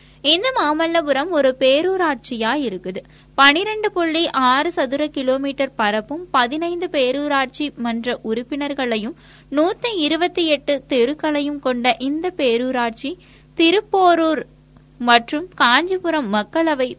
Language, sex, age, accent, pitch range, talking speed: Tamil, female, 20-39, native, 245-315 Hz, 80 wpm